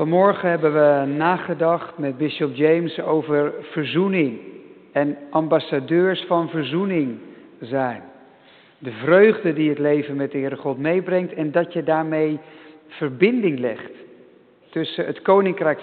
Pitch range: 155-200 Hz